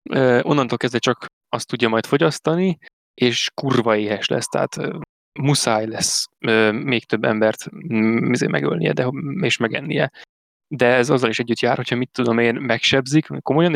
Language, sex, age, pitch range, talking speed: Hungarian, male, 20-39, 115-140 Hz, 165 wpm